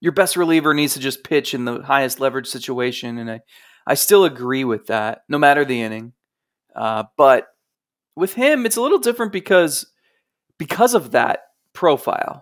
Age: 30-49